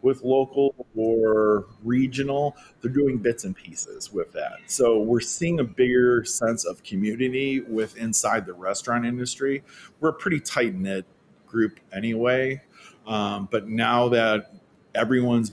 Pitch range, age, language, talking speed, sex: 95-130 Hz, 40-59, English, 135 wpm, male